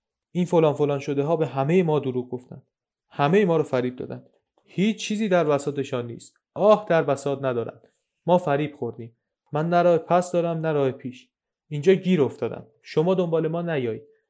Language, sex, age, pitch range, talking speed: Persian, male, 30-49, 130-165 Hz, 170 wpm